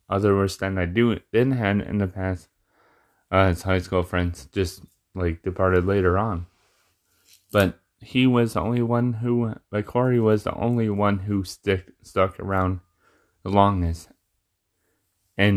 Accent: American